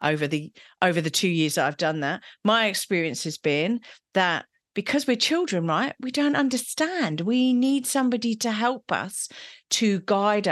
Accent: British